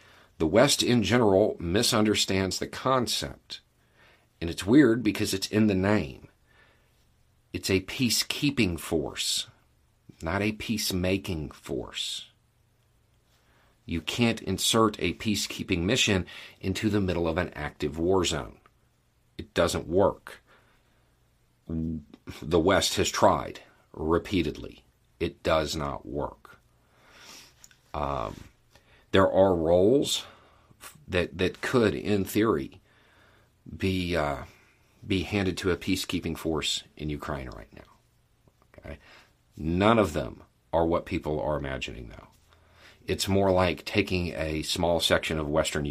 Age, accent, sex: 50-69, American, male